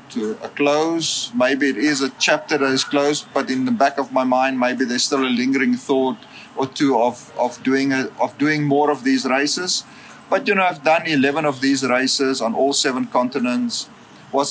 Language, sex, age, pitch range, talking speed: English, male, 40-59, 135-160 Hz, 195 wpm